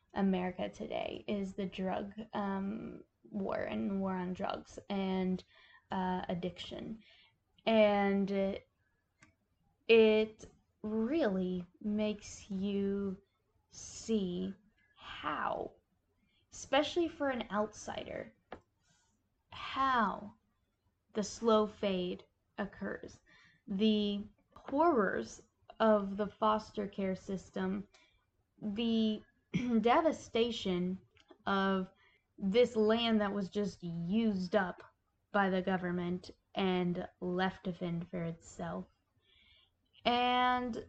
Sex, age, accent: female, 10-29, American